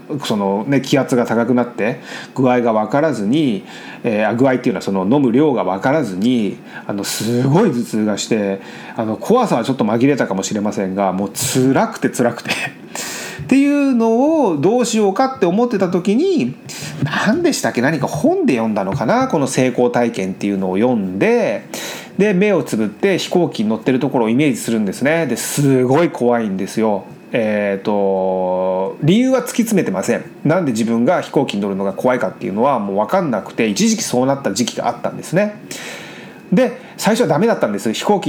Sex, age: male, 30-49